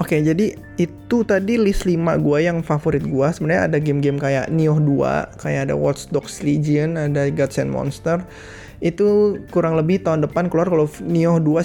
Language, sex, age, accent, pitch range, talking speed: Indonesian, male, 20-39, native, 140-170 Hz, 170 wpm